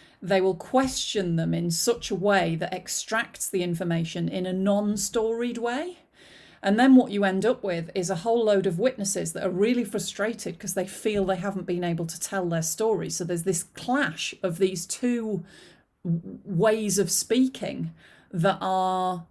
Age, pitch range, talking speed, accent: 40-59, 175-200 Hz, 175 wpm, British